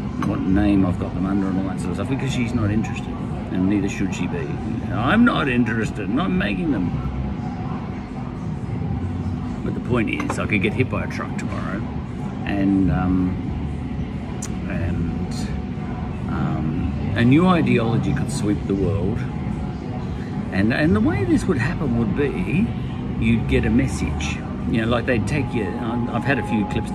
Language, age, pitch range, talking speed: English, 50-69, 95-120 Hz, 165 wpm